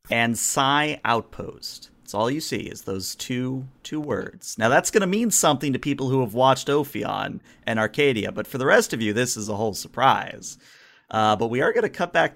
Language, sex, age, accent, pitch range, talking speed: English, male, 30-49, American, 110-135 Hz, 220 wpm